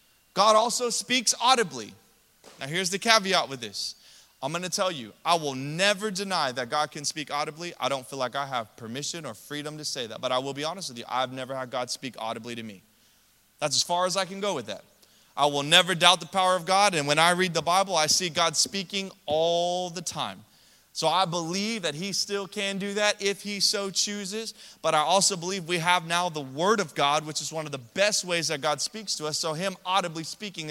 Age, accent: 20-39, American